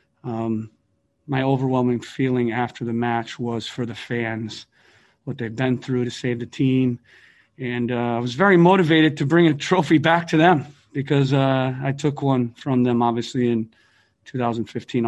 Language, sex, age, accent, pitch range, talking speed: English, male, 40-59, American, 115-130 Hz, 165 wpm